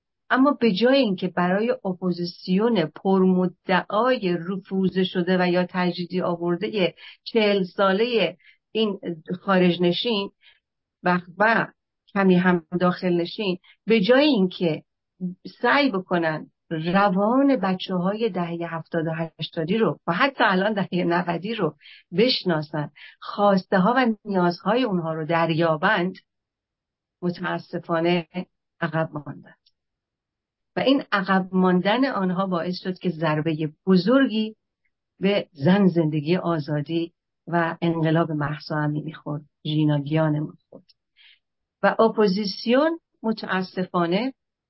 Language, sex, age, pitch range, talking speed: English, female, 50-69, 170-205 Hz, 105 wpm